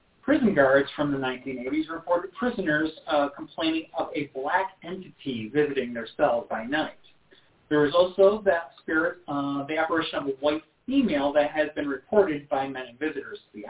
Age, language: 30-49, English